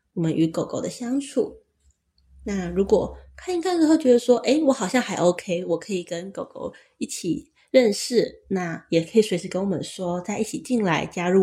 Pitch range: 180-275 Hz